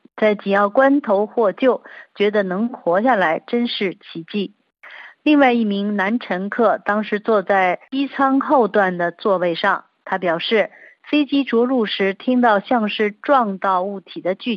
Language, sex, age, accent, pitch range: Chinese, female, 50-69, native, 195-245 Hz